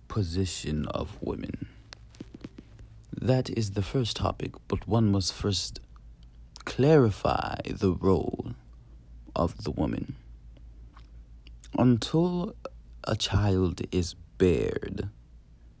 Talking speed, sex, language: 85 wpm, male, English